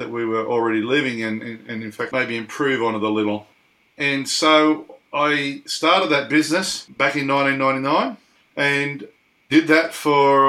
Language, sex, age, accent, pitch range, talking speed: English, male, 40-59, Australian, 115-150 Hz, 160 wpm